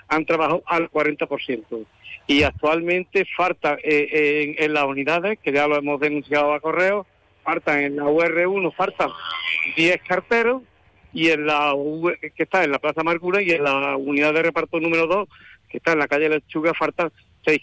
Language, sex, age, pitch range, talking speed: Spanish, male, 50-69, 135-160 Hz, 180 wpm